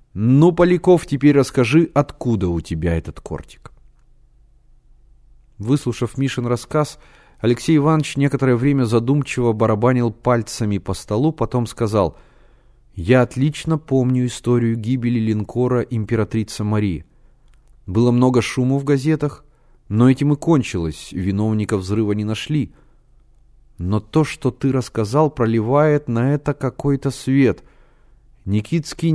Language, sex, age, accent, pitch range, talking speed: Russian, male, 30-49, native, 110-140 Hz, 115 wpm